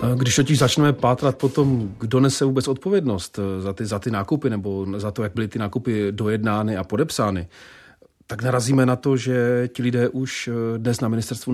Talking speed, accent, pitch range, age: 180 wpm, native, 105-120 Hz, 40-59